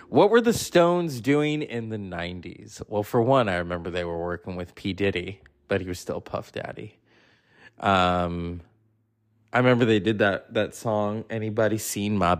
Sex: male